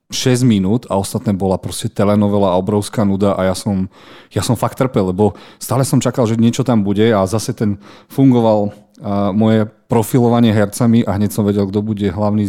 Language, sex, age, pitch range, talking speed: Slovak, male, 40-59, 100-115 Hz, 185 wpm